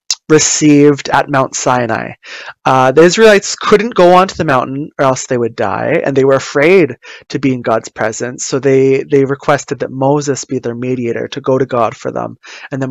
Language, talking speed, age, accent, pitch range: English, 200 wpm, 20-39, American, 125-150 Hz